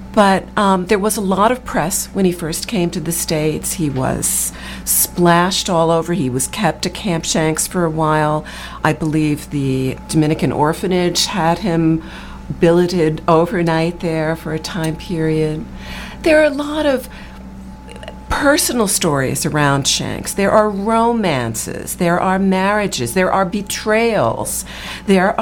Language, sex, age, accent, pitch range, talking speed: English, female, 50-69, American, 155-215 Hz, 145 wpm